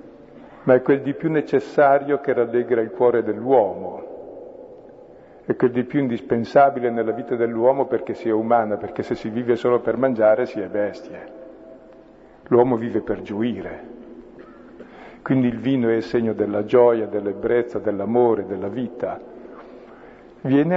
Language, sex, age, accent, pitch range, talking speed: Italian, male, 50-69, native, 110-145 Hz, 140 wpm